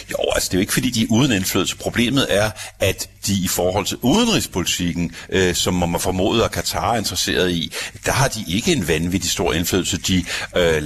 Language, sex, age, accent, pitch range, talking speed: Danish, male, 60-79, native, 90-105 Hz, 210 wpm